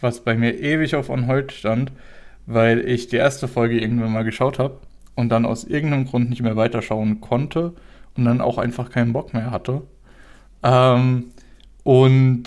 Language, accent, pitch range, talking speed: German, German, 115-130 Hz, 170 wpm